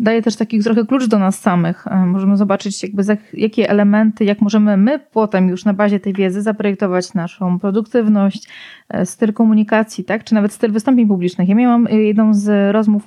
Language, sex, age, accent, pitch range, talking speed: Polish, female, 20-39, native, 205-235 Hz, 175 wpm